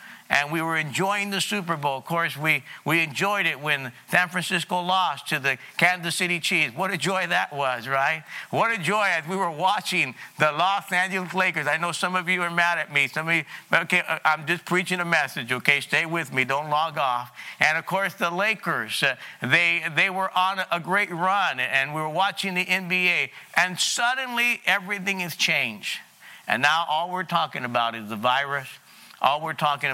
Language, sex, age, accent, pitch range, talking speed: English, male, 50-69, American, 145-185 Hz, 200 wpm